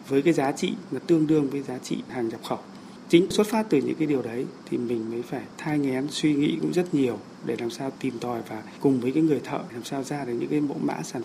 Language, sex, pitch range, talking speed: Vietnamese, male, 120-150 Hz, 275 wpm